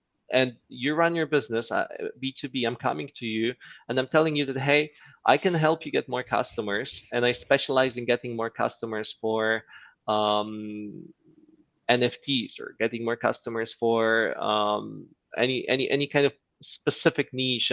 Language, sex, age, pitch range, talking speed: English, male, 20-39, 115-145 Hz, 155 wpm